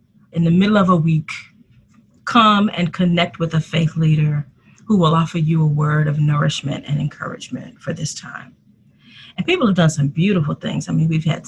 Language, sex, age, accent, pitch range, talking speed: English, female, 30-49, American, 155-195 Hz, 195 wpm